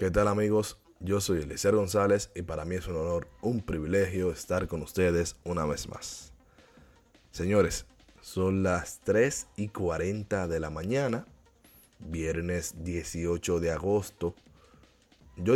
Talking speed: 135 wpm